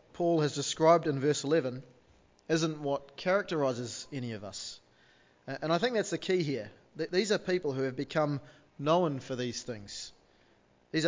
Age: 30-49